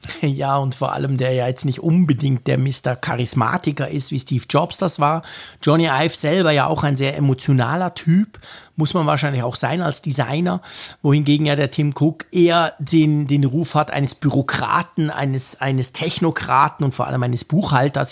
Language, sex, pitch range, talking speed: German, male, 135-165 Hz, 180 wpm